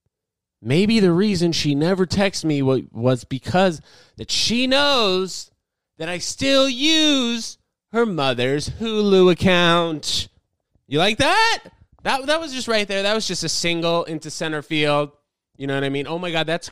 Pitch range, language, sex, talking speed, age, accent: 120-190 Hz, English, male, 165 wpm, 20-39, American